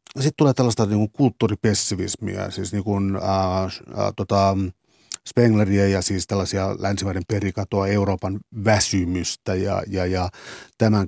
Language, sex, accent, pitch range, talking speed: Finnish, male, native, 95-105 Hz, 90 wpm